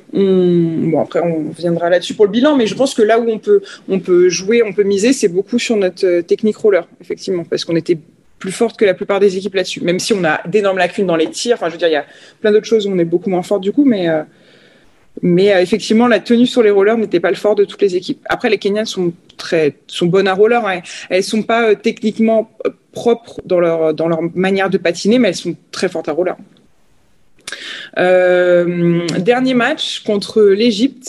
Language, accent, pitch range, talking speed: French, French, 180-230 Hz, 235 wpm